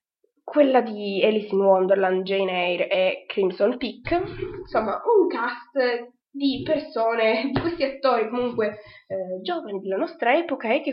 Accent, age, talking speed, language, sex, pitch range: native, 20-39, 145 wpm, Italian, female, 195-280 Hz